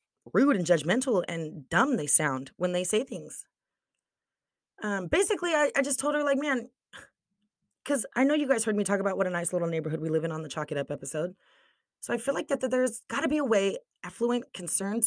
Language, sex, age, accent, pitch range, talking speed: English, female, 20-39, American, 180-250 Hz, 225 wpm